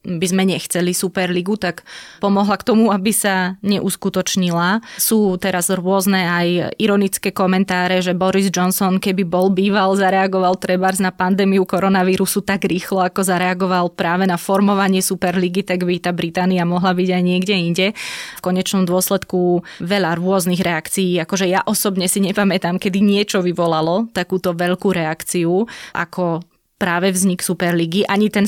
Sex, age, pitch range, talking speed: female, 20-39, 180-195 Hz, 145 wpm